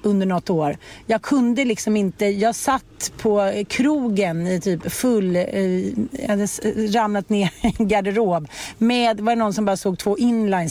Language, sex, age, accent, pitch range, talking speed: Swedish, female, 40-59, native, 200-260 Hz, 150 wpm